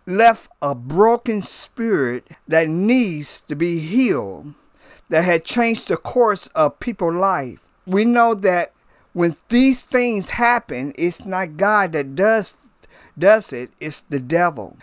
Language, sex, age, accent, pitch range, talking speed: English, male, 50-69, American, 165-240 Hz, 140 wpm